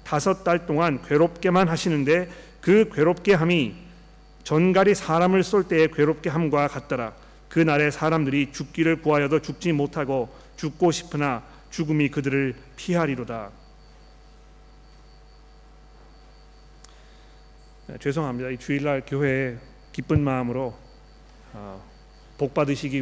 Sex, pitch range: male, 135-170 Hz